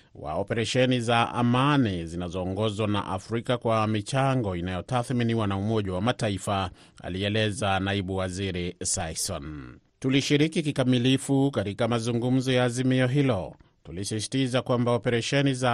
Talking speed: 110 wpm